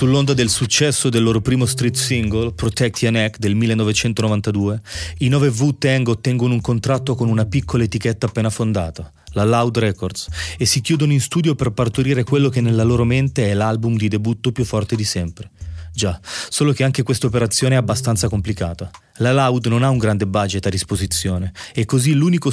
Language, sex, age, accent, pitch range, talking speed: Italian, male, 30-49, native, 105-130 Hz, 185 wpm